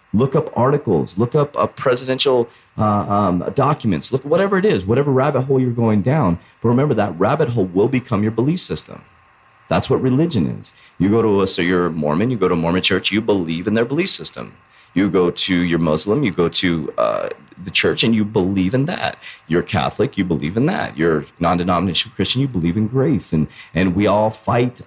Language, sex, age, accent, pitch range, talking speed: English, male, 30-49, American, 85-120 Hz, 210 wpm